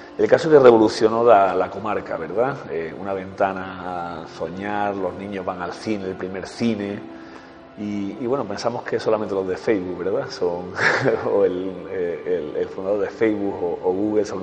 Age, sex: 40-59, male